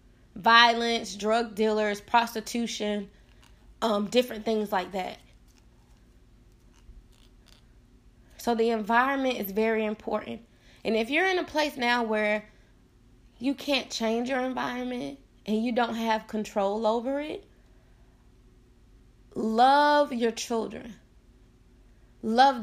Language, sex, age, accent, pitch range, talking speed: English, female, 20-39, American, 200-255 Hz, 105 wpm